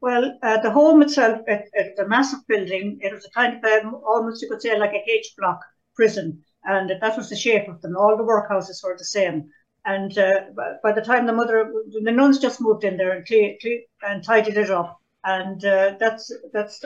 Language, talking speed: English, 210 wpm